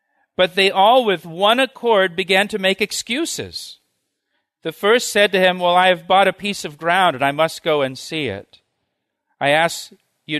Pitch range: 140-180 Hz